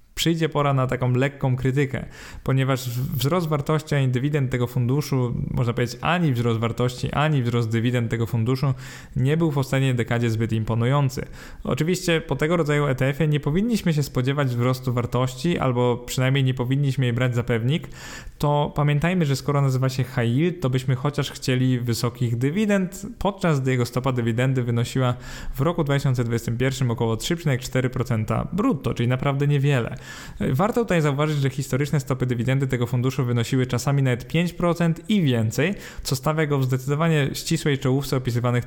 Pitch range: 125-150 Hz